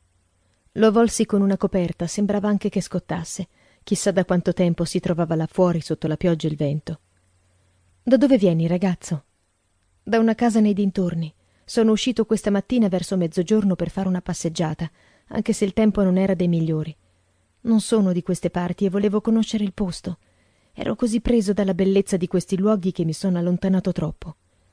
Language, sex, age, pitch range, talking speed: Italian, female, 30-49, 155-205 Hz, 175 wpm